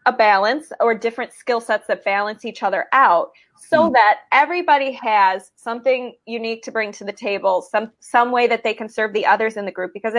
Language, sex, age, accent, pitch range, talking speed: English, female, 20-39, American, 205-265 Hz, 205 wpm